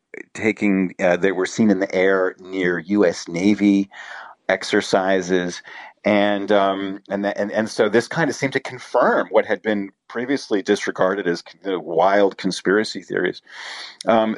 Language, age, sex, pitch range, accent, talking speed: English, 40-59, male, 95-115 Hz, American, 150 wpm